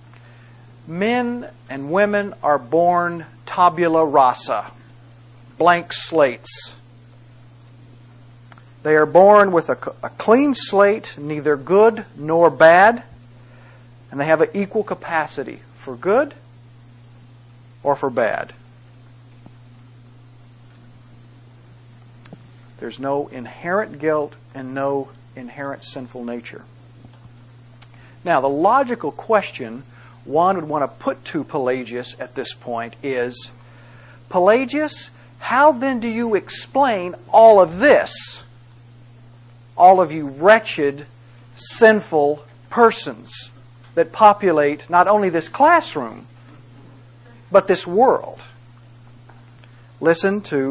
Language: English